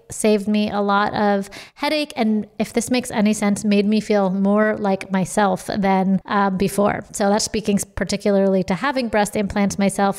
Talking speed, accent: 175 wpm, American